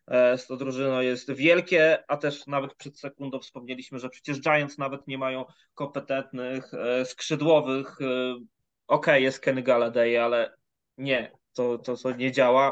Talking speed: 135 wpm